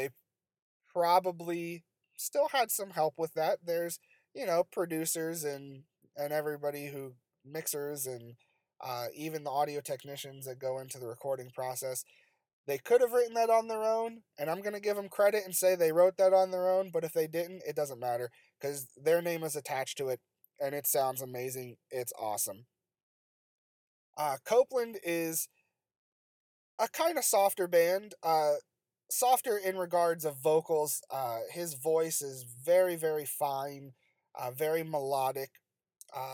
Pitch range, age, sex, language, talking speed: 135-180 Hz, 30-49, male, English, 160 wpm